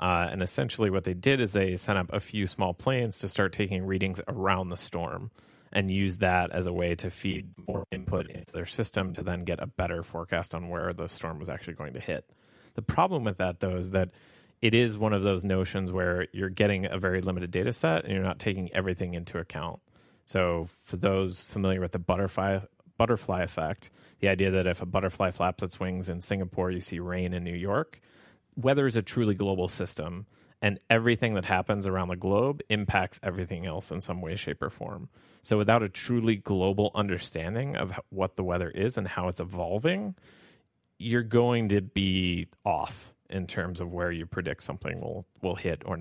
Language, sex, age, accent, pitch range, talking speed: English, male, 30-49, American, 90-105 Hz, 205 wpm